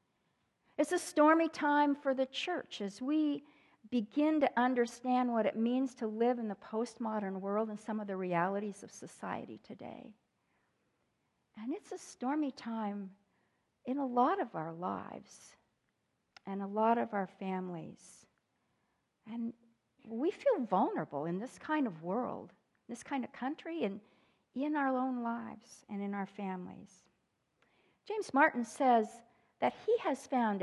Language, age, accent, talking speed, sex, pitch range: English, 50-69, American, 145 wpm, female, 200-285 Hz